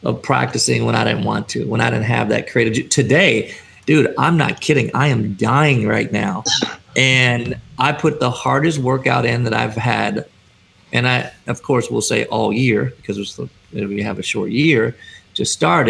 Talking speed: 185 wpm